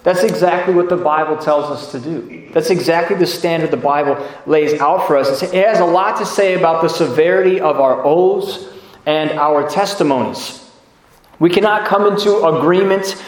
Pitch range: 165-210 Hz